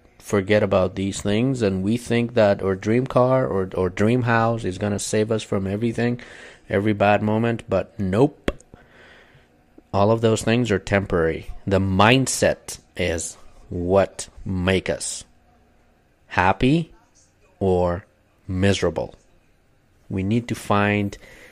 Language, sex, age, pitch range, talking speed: English, male, 30-49, 95-110 Hz, 130 wpm